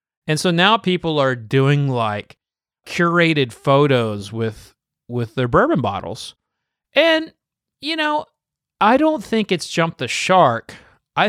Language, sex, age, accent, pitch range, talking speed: English, male, 30-49, American, 110-140 Hz, 135 wpm